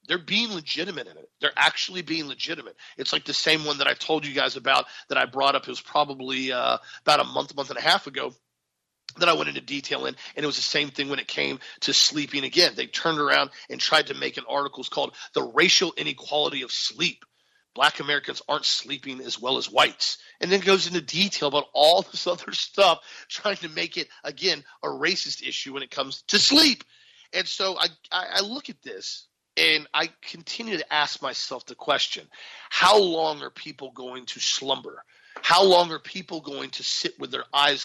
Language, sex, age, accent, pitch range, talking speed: English, male, 40-59, American, 140-200 Hz, 215 wpm